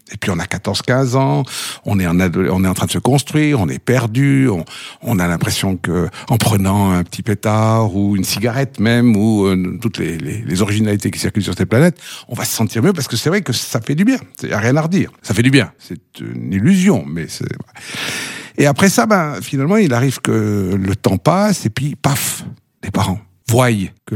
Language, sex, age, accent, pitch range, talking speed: French, male, 60-79, French, 100-135 Hz, 235 wpm